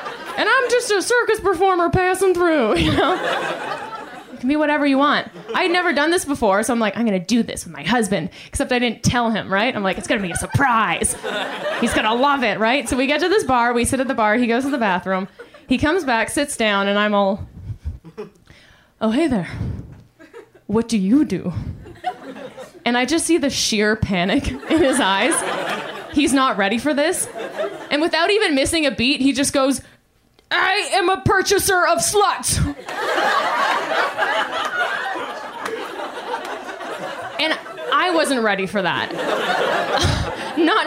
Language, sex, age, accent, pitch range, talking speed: English, female, 20-39, American, 225-335 Hz, 180 wpm